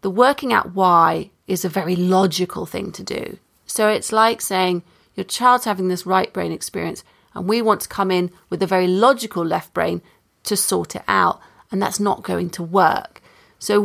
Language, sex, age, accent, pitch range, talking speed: English, female, 30-49, British, 190-230 Hz, 195 wpm